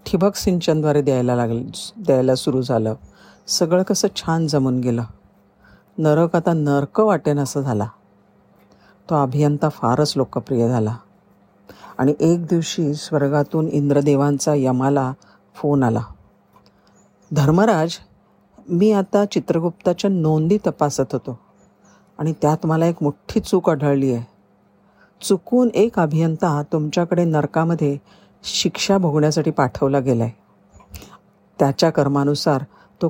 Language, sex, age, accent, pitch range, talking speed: Marathi, female, 50-69, native, 125-170 Hz, 105 wpm